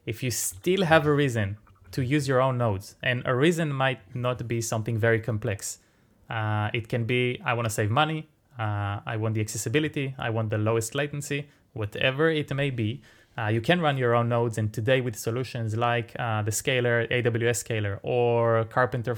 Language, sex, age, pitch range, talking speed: English, male, 20-39, 115-140 Hz, 195 wpm